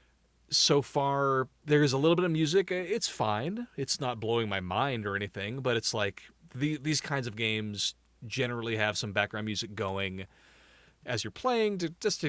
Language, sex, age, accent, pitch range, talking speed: English, male, 30-49, American, 105-150 Hz, 180 wpm